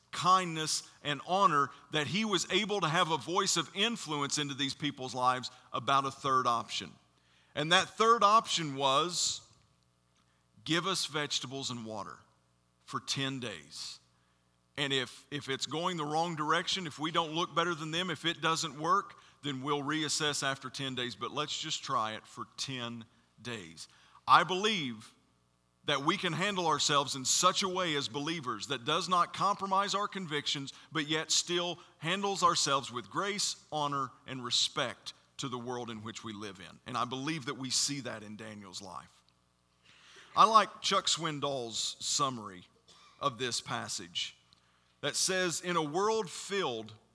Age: 40-59